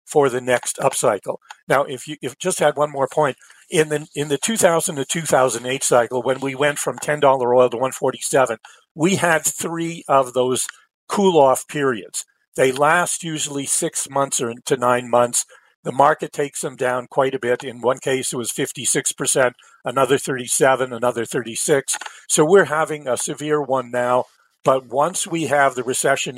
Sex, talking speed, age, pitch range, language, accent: male, 200 wpm, 50-69, 125-150 Hz, English, American